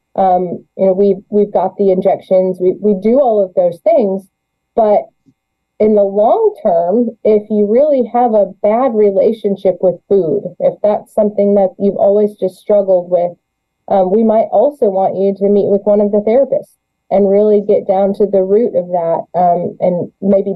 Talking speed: 185 wpm